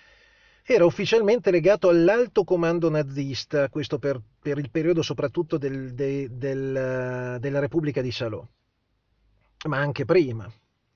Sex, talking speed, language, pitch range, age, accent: male, 105 wpm, Italian, 130-175 Hz, 40-59, native